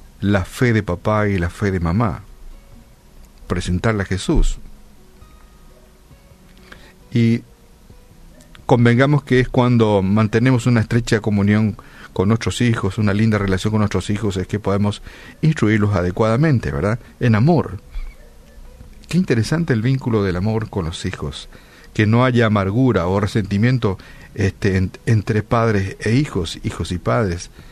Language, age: Spanish, 50-69